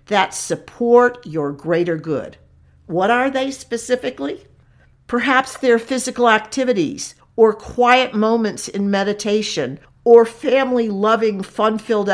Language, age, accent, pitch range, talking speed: English, 50-69, American, 185-255 Hz, 105 wpm